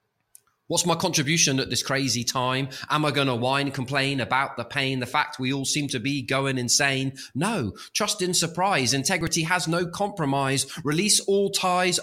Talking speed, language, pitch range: 180 wpm, English, 110-170 Hz